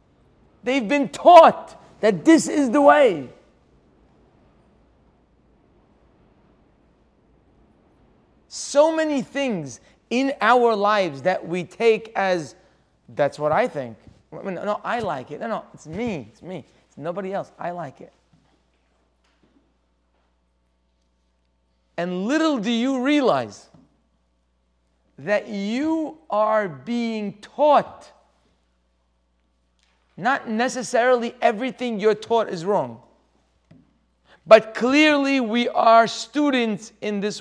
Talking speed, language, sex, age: 100 wpm, English, male, 40-59